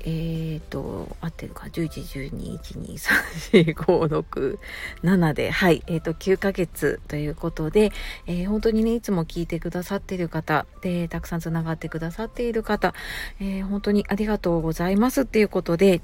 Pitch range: 165-215 Hz